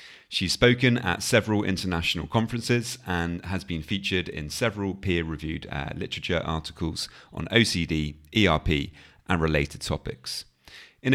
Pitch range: 80-105 Hz